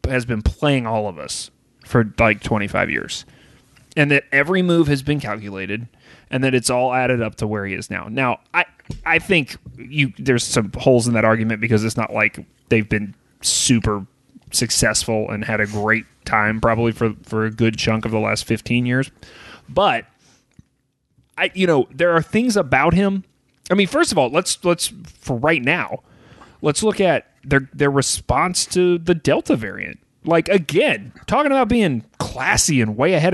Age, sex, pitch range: 30-49, male, 115-170 Hz